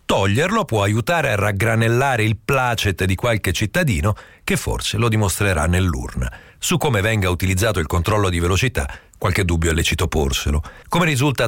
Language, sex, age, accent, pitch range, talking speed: Italian, male, 50-69, native, 95-130 Hz, 155 wpm